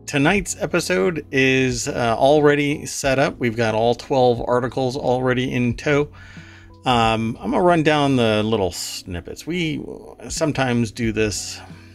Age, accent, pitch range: 40-59, American, 105-135 Hz